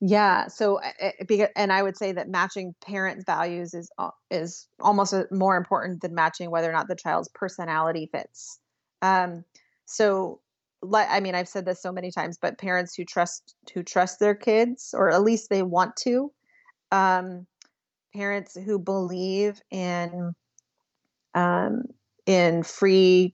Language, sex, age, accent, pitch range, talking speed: English, female, 30-49, American, 180-215 Hz, 145 wpm